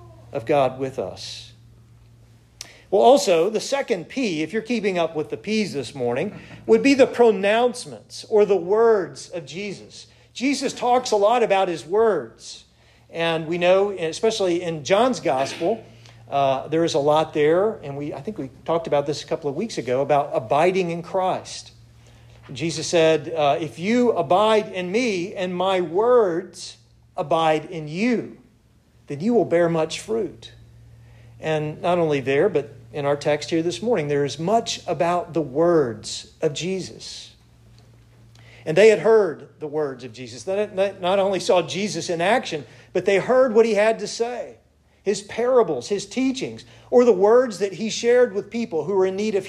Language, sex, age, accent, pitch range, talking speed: English, male, 50-69, American, 135-210 Hz, 175 wpm